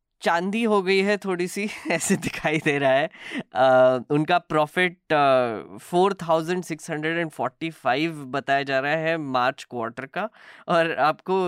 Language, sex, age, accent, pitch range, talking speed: Hindi, female, 10-29, native, 130-170 Hz, 125 wpm